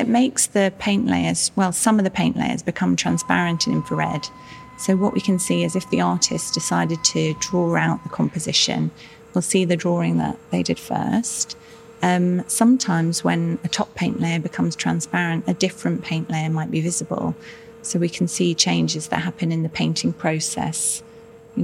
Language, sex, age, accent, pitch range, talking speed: English, female, 30-49, British, 150-210 Hz, 185 wpm